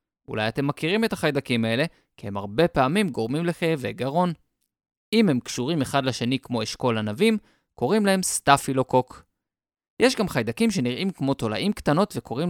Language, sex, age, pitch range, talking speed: Hebrew, male, 20-39, 120-185 Hz, 155 wpm